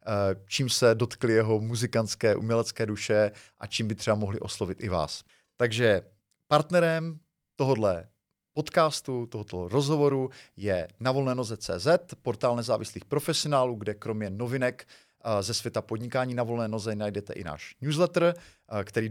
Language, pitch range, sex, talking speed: Czech, 105-130 Hz, male, 125 wpm